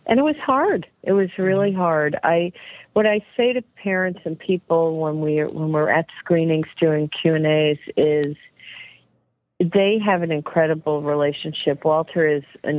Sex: female